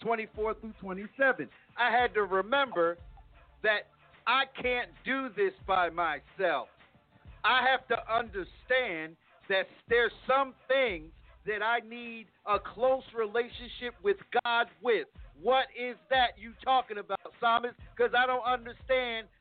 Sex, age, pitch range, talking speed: male, 50-69, 205-255 Hz, 130 wpm